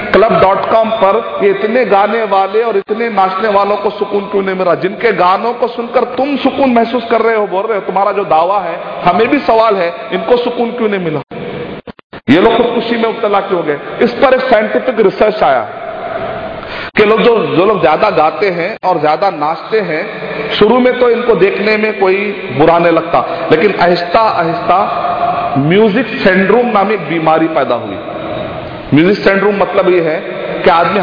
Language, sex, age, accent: Hindi, male, 40-59, native